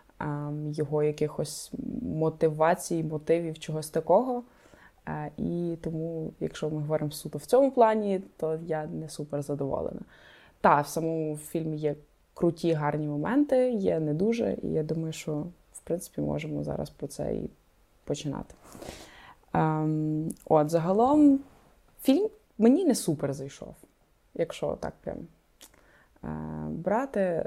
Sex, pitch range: female, 160-200 Hz